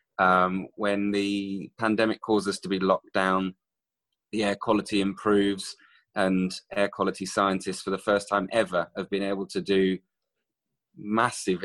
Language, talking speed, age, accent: English, 150 wpm, 20-39, British